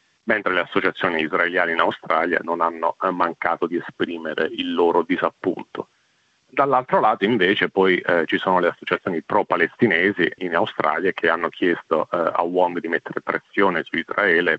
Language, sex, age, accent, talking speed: Italian, male, 40-59, native, 155 wpm